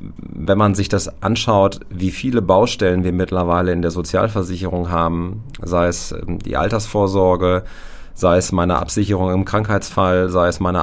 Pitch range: 90-105 Hz